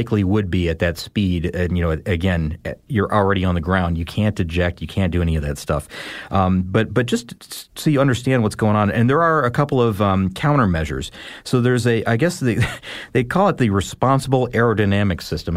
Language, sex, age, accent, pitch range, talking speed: English, male, 40-59, American, 95-120 Hz, 210 wpm